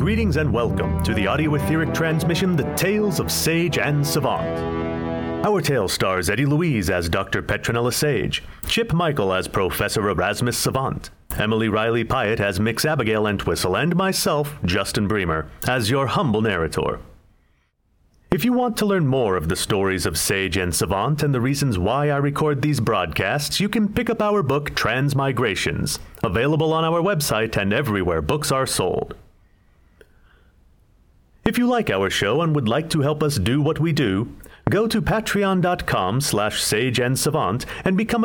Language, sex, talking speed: English, male, 155 wpm